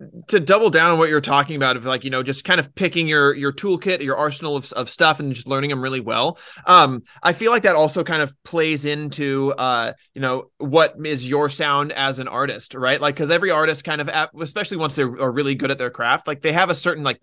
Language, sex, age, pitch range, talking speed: English, male, 20-39, 135-155 Hz, 250 wpm